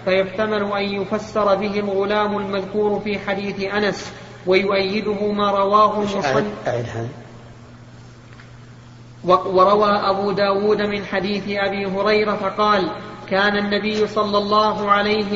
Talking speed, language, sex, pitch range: 100 wpm, Arabic, male, 200-210 Hz